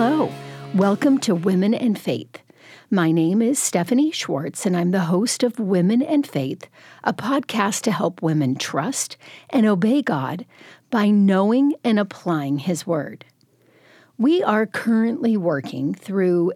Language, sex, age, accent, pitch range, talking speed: English, female, 50-69, American, 170-240 Hz, 140 wpm